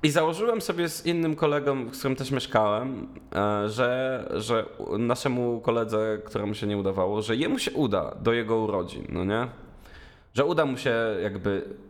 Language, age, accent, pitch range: Polish, 20-39, native, 100-135 Hz